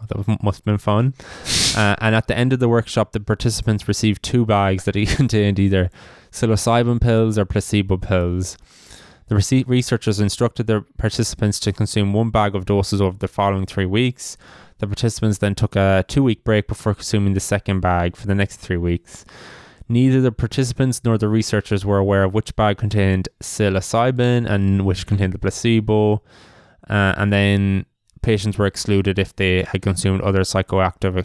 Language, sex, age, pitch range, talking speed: English, male, 20-39, 95-110 Hz, 170 wpm